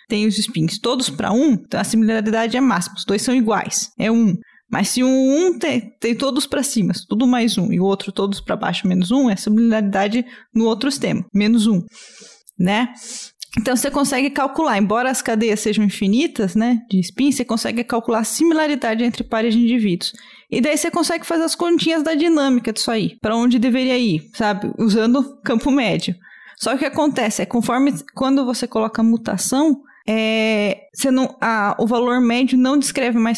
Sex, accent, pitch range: female, Brazilian, 210-250 Hz